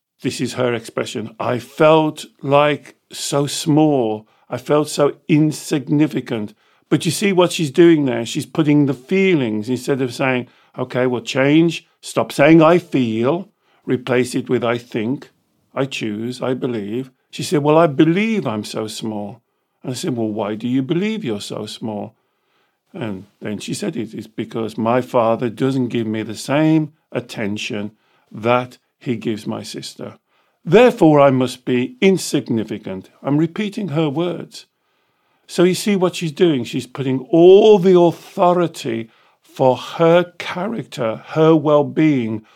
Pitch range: 120-170 Hz